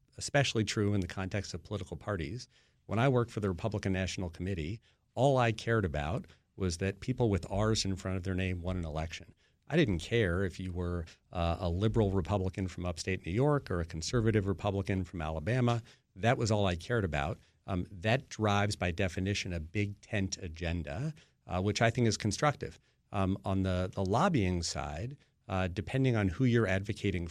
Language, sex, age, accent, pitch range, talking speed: English, male, 40-59, American, 95-115 Hz, 190 wpm